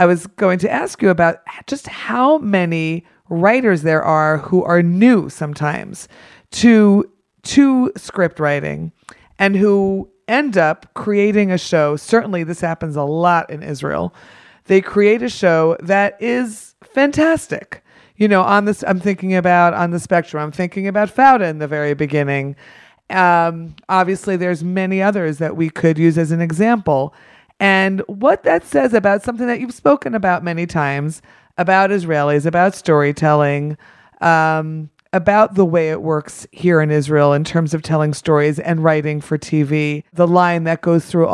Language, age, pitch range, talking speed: English, 40-59, 155-195 Hz, 160 wpm